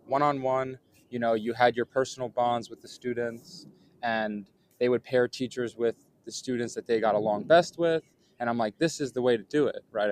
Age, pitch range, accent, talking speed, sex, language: 20-39, 110-130 Hz, American, 215 wpm, male, English